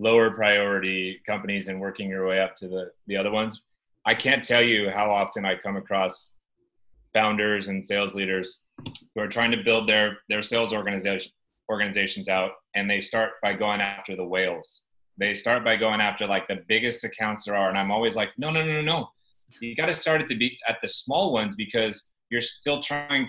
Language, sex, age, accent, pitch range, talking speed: English, male, 30-49, American, 95-120 Hz, 205 wpm